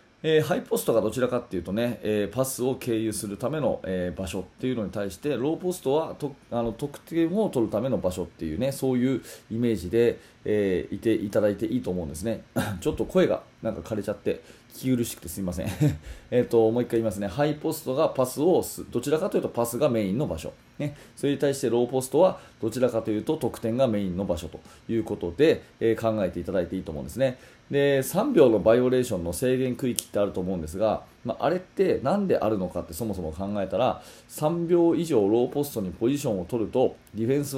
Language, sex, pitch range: Japanese, male, 105-135 Hz